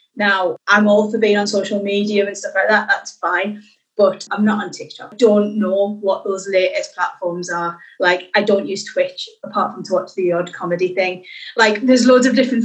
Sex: female